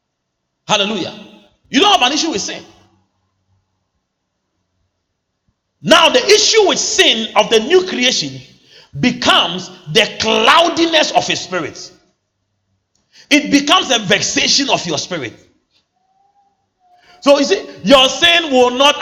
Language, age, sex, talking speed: English, 40-59, male, 115 wpm